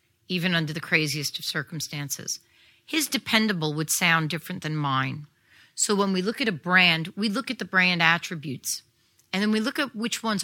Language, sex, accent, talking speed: English, female, American, 190 wpm